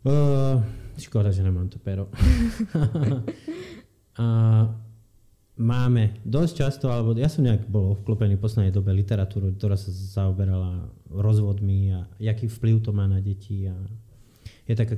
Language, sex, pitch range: Slovak, male, 100-115 Hz